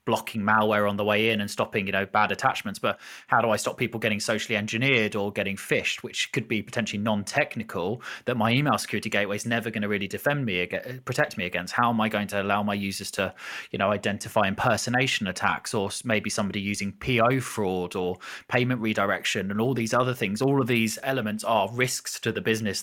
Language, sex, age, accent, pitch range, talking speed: English, male, 20-39, British, 105-125 Hz, 215 wpm